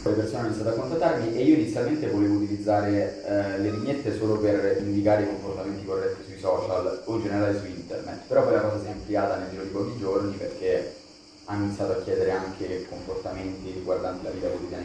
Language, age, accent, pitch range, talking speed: Italian, 20-39, native, 95-110 Hz, 200 wpm